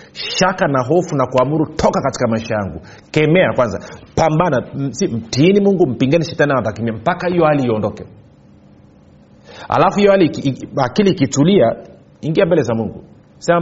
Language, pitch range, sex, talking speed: Swahili, 115-155 Hz, male, 125 wpm